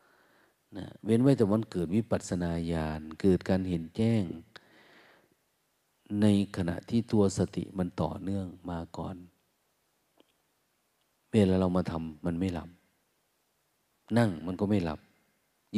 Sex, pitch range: male, 85-105 Hz